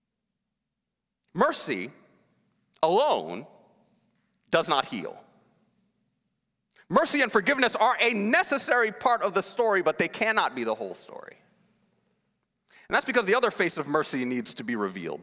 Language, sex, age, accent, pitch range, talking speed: English, male, 30-49, American, 220-290 Hz, 135 wpm